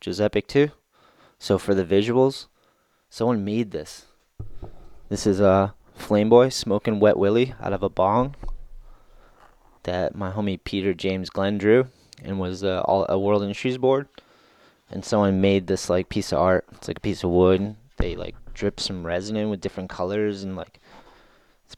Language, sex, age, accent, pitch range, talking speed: English, male, 20-39, American, 95-105 Hz, 175 wpm